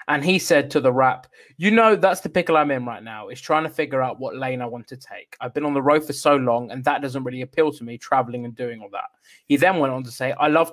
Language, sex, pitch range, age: English, male, 130-165 Hz, 20-39